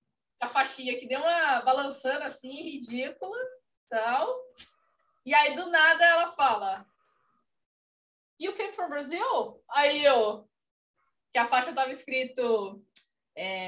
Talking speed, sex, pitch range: 120 wpm, female, 230-315 Hz